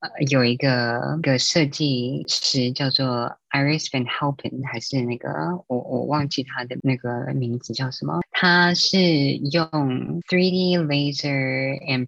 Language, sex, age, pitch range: Chinese, female, 20-39, 130-160 Hz